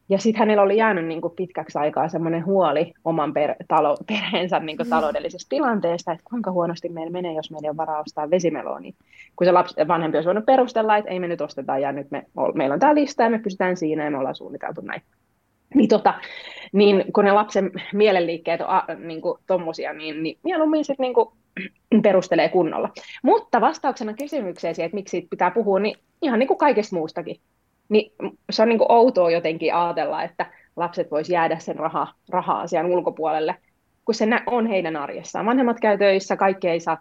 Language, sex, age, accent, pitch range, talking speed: Finnish, female, 20-39, native, 165-220 Hz, 185 wpm